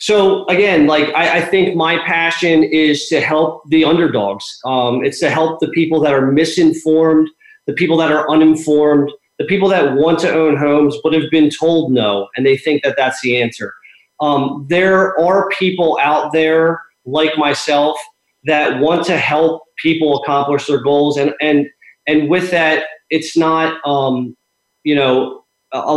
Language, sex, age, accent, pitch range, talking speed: English, male, 30-49, American, 140-160 Hz, 165 wpm